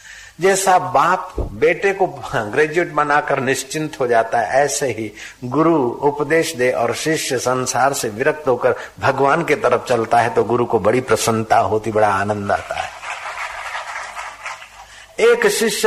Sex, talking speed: male, 145 wpm